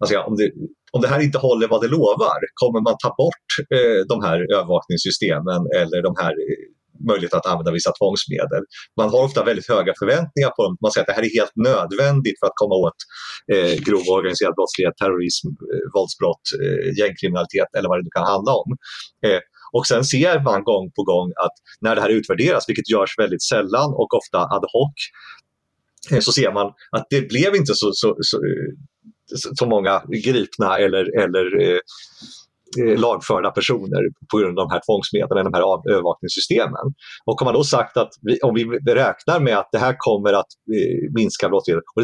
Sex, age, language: male, 30-49, Swedish